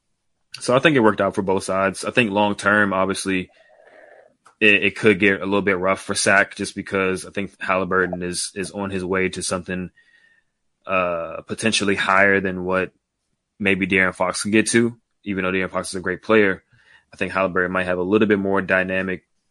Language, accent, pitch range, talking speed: English, American, 90-105 Hz, 195 wpm